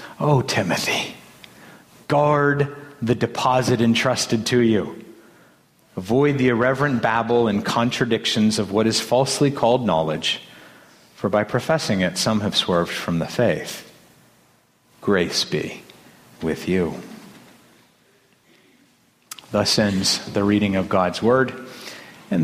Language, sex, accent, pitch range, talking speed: English, male, American, 110-145 Hz, 110 wpm